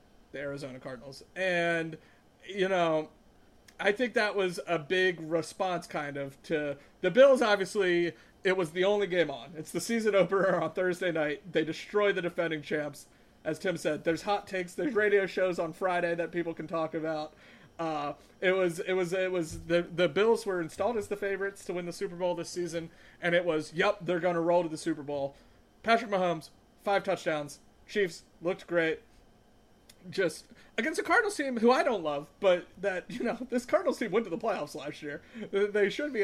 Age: 30-49